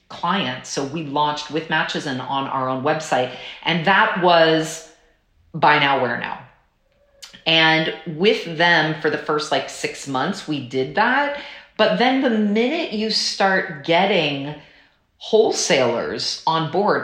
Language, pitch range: English, 150-190 Hz